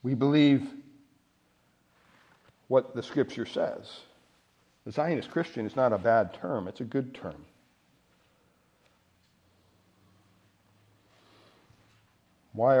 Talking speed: 90 wpm